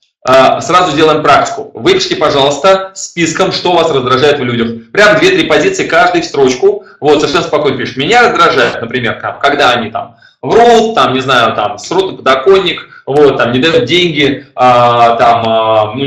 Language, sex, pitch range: Russian, male, 125-210 Hz